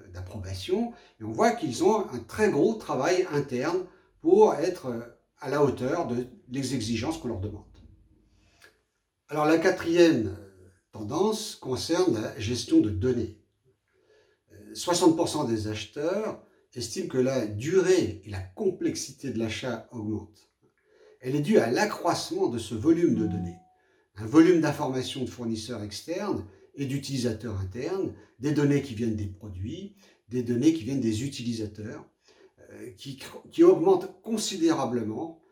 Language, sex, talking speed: French, male, 135 wpm